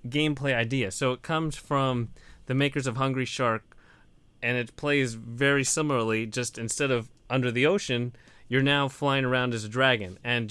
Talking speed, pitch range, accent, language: 170 wpm, 115-135 Hz, American, English